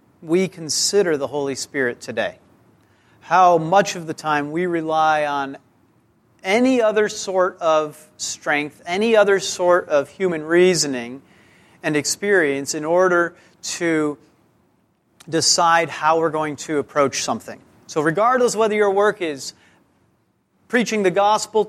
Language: English